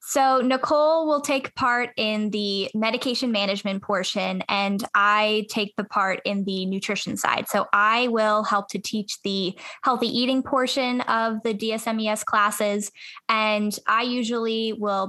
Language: English